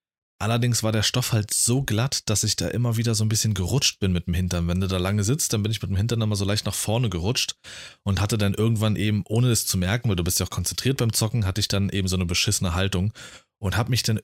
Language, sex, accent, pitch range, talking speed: German, male, German, 95-115 Hz, 280 wpm